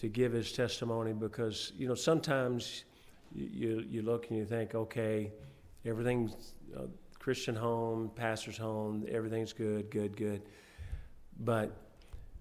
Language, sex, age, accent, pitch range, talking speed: English, male, 50-69, American, 105-115 Hz, 130 wpm